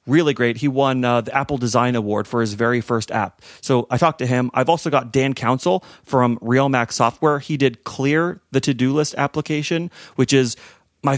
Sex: male